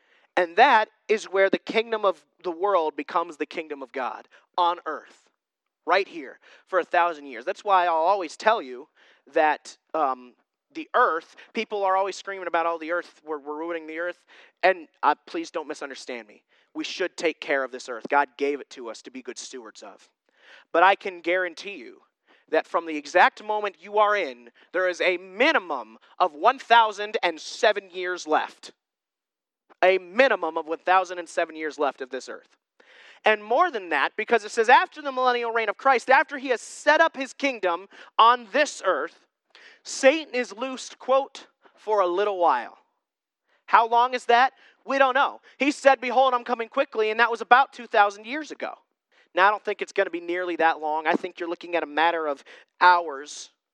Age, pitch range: 30-49, 175-250 Hz